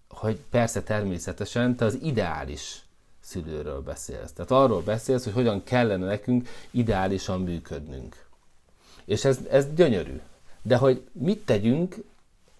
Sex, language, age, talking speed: male, Hungarian, 30-49, 120 wpm